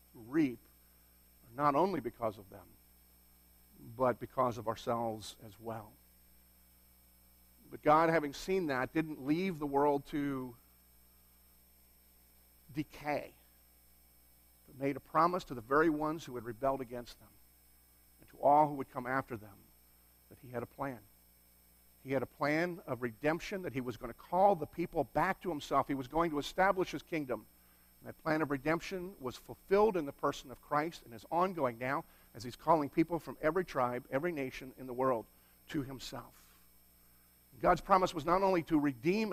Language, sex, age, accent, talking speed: English, male, 50-69, American, 165 wpm